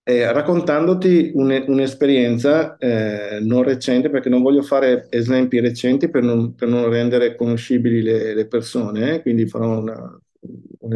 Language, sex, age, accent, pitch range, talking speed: Italian, male, 50-69, native, 115-135 Hz, 125 wpm